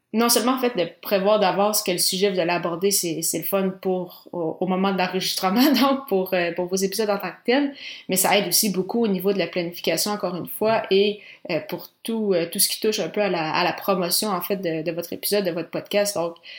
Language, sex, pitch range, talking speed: French, female, 180-210 Hz, 265 wpm